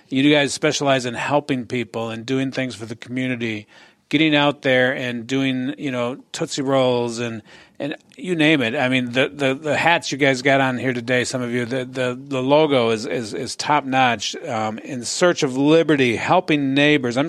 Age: 40-59